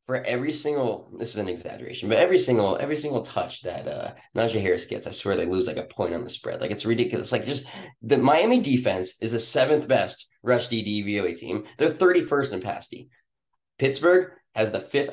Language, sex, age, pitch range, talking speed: English, male, 20-39, 105-130 Hz, 210 wpm